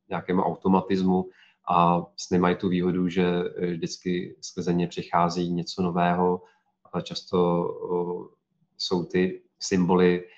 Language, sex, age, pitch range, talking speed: Czech, male, 30-49, 90-95 Hz, 105 wpm